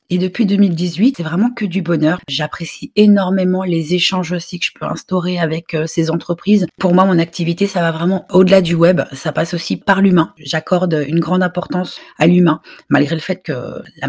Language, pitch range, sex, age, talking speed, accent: French, 165-200 Hz, female, 40-59, 195 wpm, French